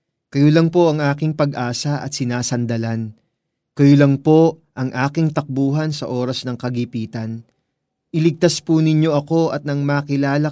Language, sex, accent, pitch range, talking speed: Filipino, male, native, 125-165 Hz, 145 wpm